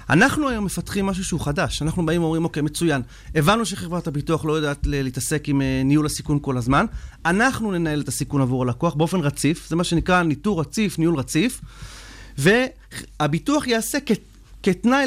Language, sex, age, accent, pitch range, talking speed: Hebrew, male, 30-49, native, 145-195 Hz, 165 wpm